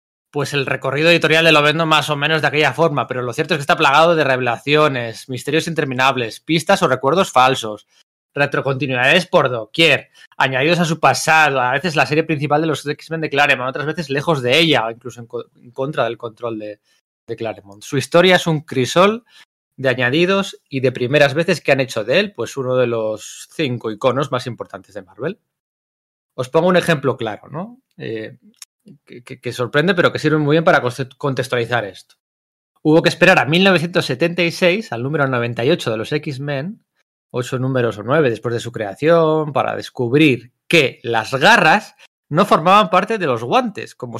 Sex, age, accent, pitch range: male, 20-39, Spanish, 125-165 Hz